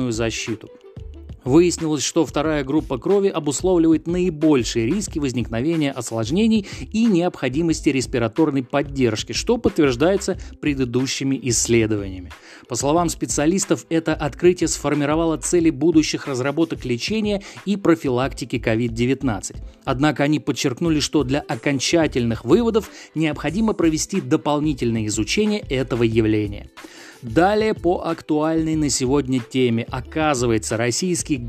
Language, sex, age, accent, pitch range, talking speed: Russian, male, 30-49, native, 125-165 Hz, 100 wpm